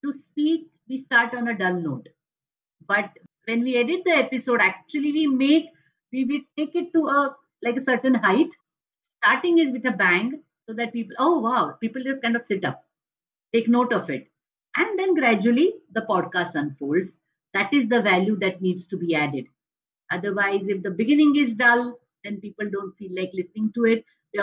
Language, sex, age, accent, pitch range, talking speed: Marathi, female, 50-69, native, 190-255 Hz, 190 wpm